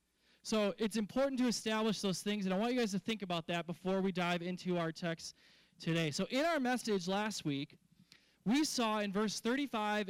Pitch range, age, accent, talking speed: 175-225 Hz, 20-39, American, 200 wpm